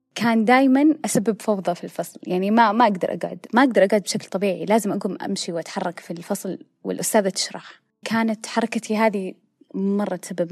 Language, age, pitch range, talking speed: Arabic, 20-39, 185-235 Hz, 165 wpm